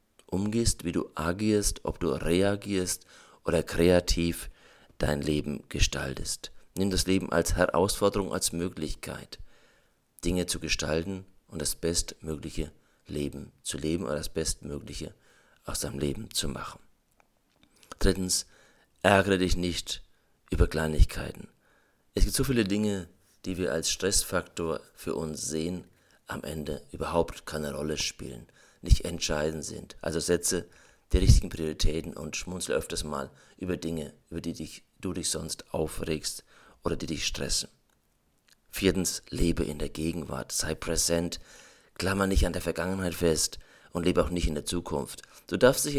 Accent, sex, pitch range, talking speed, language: German, male, 75-95 Hz, 140 wpm, German